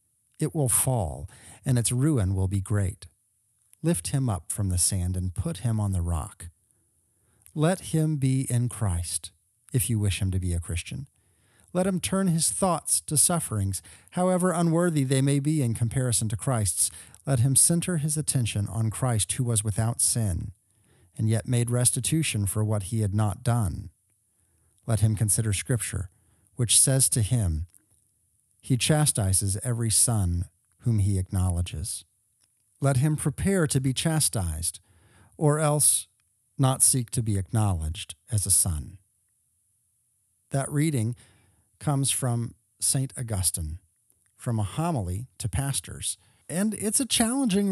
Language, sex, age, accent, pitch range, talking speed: English, male, 40-59, American, 100-135 Hz, 145 wpm